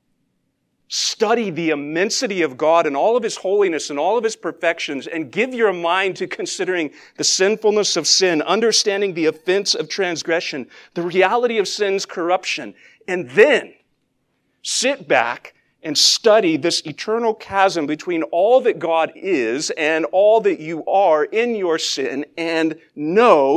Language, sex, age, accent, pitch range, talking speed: English, male, 50-69, American, 150-215 Hz, 150 wpm